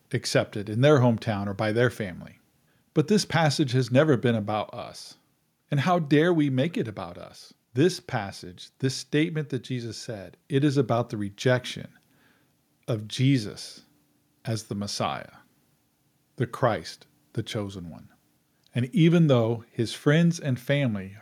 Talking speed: 150 wpm